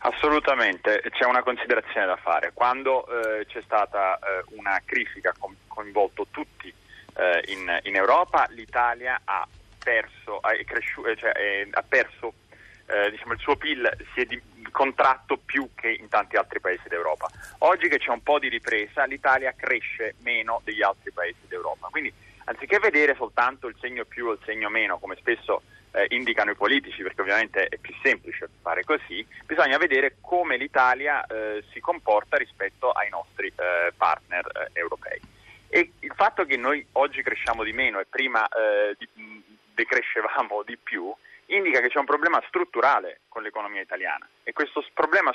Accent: native